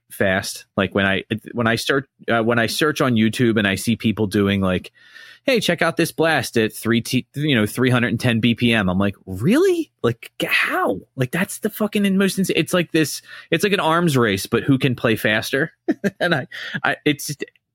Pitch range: 110-155 Hz